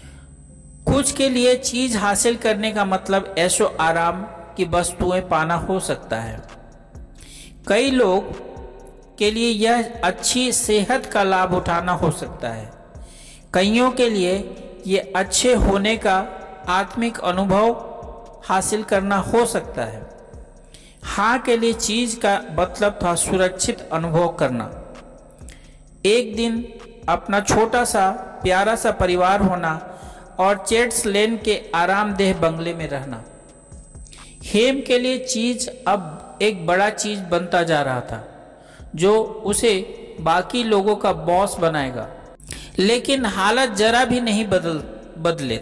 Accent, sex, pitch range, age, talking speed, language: native, male, 180-230 Hz, 50-69, 130 wpm, Hindi